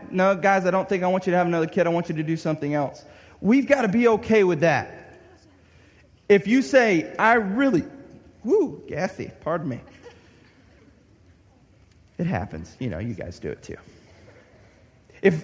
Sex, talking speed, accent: male, 175 wpm, American